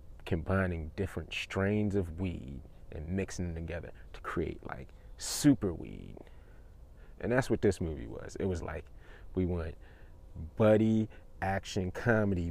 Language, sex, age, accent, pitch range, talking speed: English, male, 30-49, American, 80-100 Hz, 135 wpm